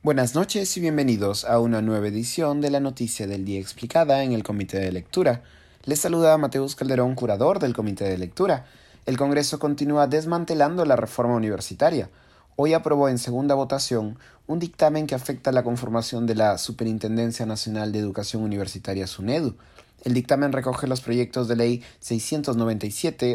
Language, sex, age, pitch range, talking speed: Spanish, male, 30-49, 110-140 Hz, 165 wpm